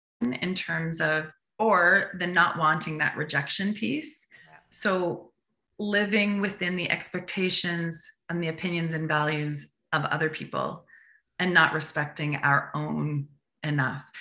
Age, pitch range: 30-49, 155-195 Hz